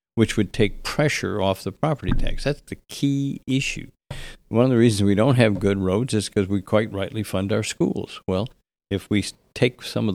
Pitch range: 95-110 Hz